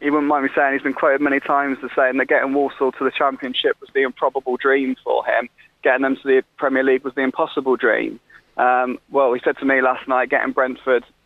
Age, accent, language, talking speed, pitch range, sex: 20-39, British, English, 230 wpm, 130-140 Hz, male